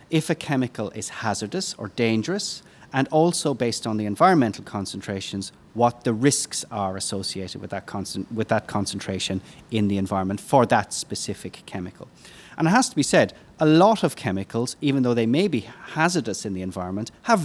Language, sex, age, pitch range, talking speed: English, male, 30-49, 105-135 Hz, 180 wpm